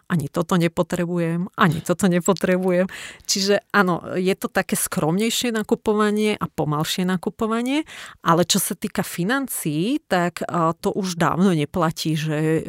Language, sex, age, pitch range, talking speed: Slovak, female, 30-49, 160-185 Hz, 130 wpm